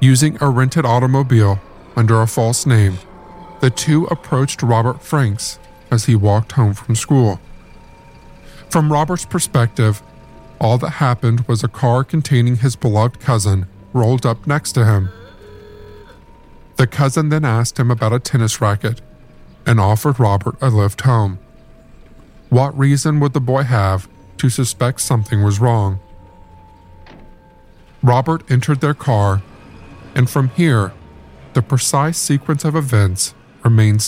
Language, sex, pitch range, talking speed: English, male, 95-140 Hz, 135 wpm